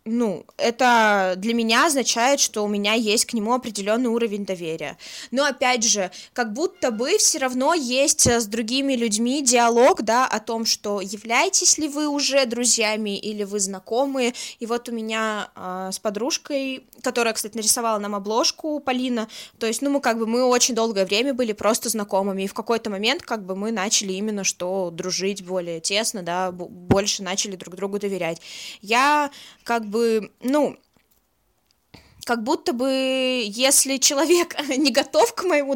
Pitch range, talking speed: 205-270 Hz, 165 wpm